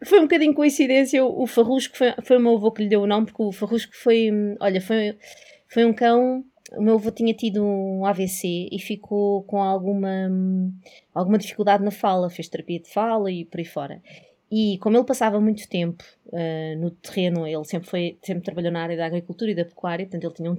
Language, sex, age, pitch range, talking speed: Portuguese, female, 20-39, 190-235 Hz, 210 wpm